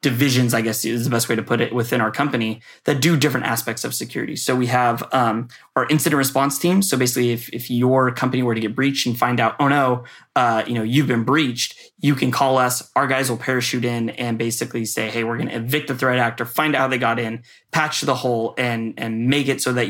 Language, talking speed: English, 250 wpm